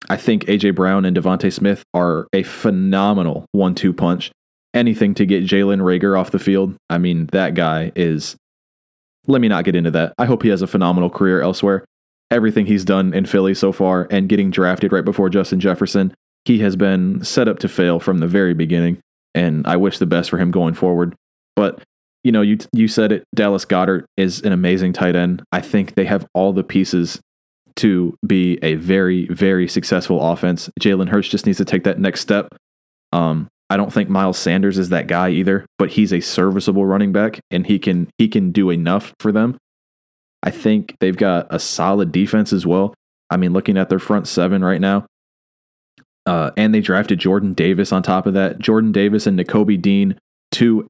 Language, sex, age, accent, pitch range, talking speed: English, male, 20-39, American, 90-100 Hz, 200 wpm